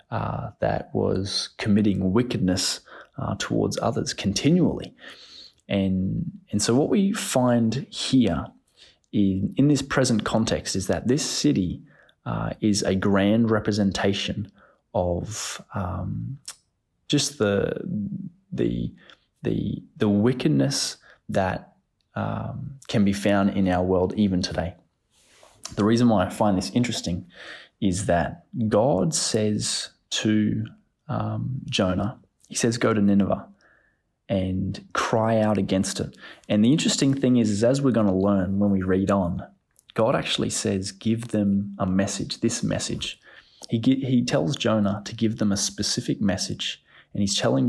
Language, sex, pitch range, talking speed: English, male, 95-115 Hz, 135 wpm